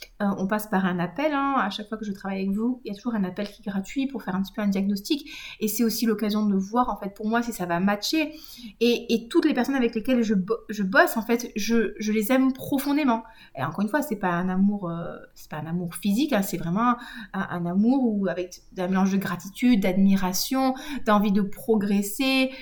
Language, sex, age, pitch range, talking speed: French, female, 30-49, 200-250 Hz, 245 wpm